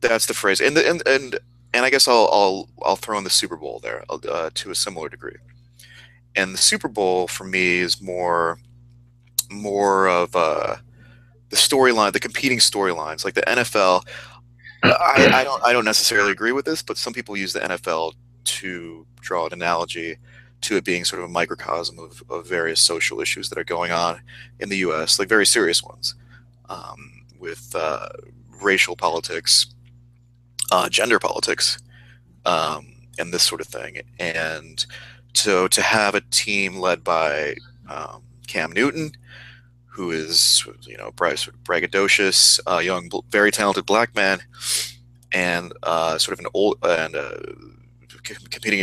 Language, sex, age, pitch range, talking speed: English, male, 30-49, 90-120 Hz, 160 wpm